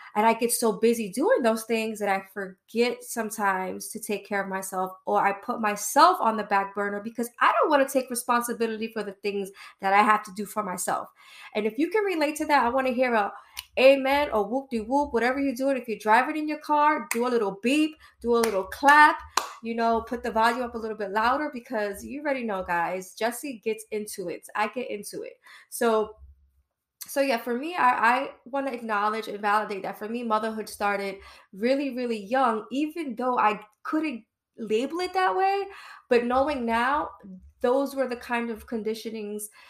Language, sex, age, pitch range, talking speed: English, female, 20-39, 205-250 Hz, 205 wpm